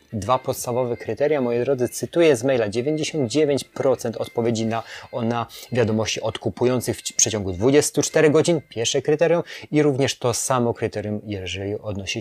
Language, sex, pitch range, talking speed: Polish, male, 110-135 Hz, 140 wpm